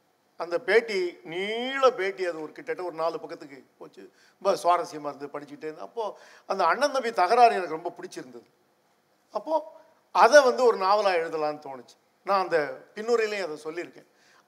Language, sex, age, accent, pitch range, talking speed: Tamil, male, 50-69, native, 170-235 Hz, 145 wpm